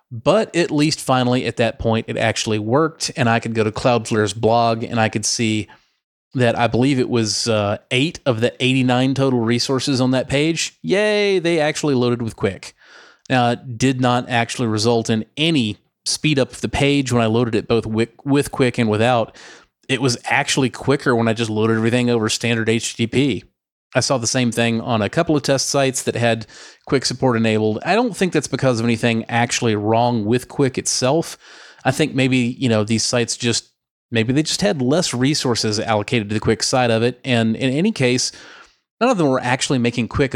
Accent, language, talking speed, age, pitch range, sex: American, English, 205 wpm, 30-49, 115-135 Hz, male